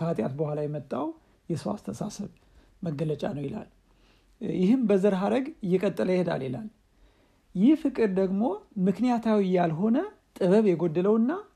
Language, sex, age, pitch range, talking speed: Amharic, male, 60-79, 155-215 Hz, 120 wpm